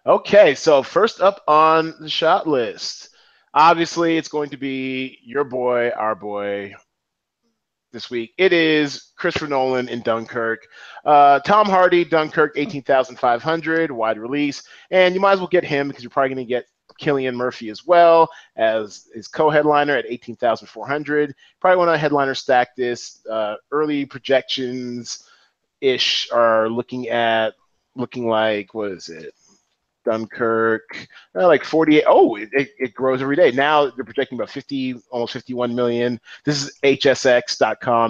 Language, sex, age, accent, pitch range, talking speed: English, male, 30-49, American, 120-155 Hz, 155 wpm